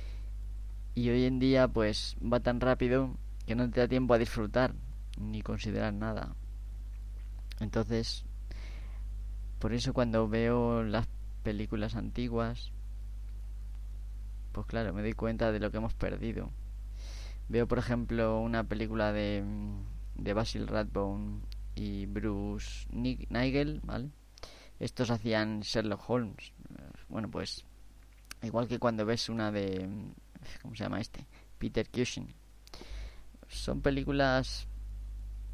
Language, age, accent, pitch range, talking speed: Spanish, 20-39, Spanish, 100-120 Hz, 120 wpm